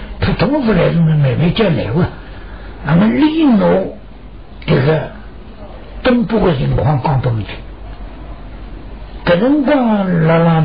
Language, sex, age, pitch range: Chinese, male, 60-79, 130-220 Hz